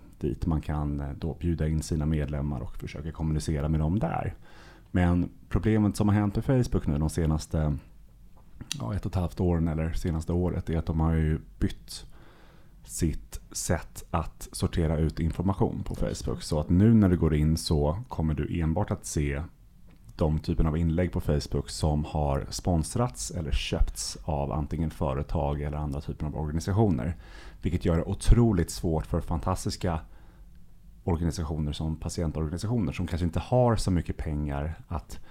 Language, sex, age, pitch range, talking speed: Swedish, male, 30-49, 80-90 Hz, 165 wpm